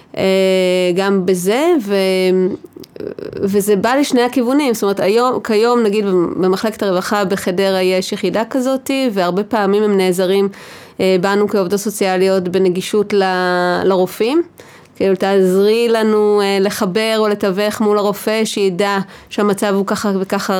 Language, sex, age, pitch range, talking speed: Hebrew, female, 30-49, 185-210 Hz, 120 wpm